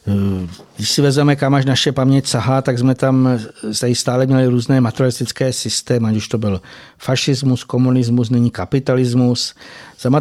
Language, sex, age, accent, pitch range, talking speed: Czech, male, 50-69, native, 120-135 Hz, 145 wpm